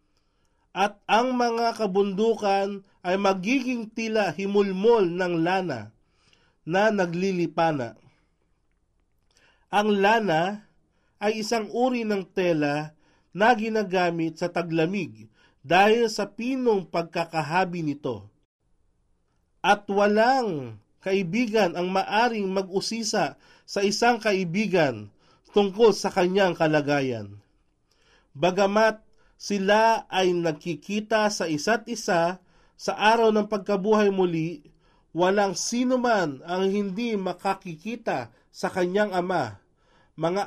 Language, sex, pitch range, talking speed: Filipino, male, 160-210 Hz, 95 wpm